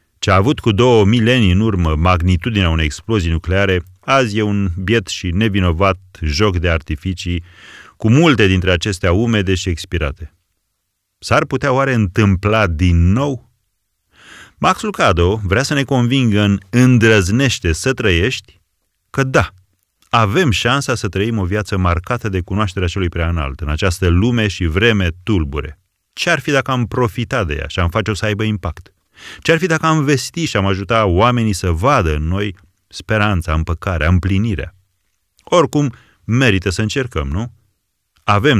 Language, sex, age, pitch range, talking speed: Romanian, male, 30-49, 90-115 Hz, 150 wpm